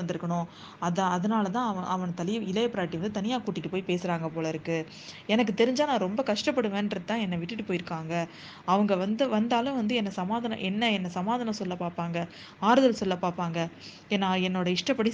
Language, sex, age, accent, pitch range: Tamil, female, 20-39, native, 180-220 Hz